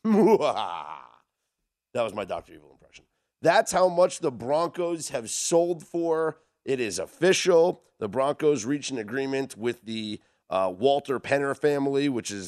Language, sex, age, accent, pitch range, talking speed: English, male, 40-59, American, 105-160 Hz, 145 wpm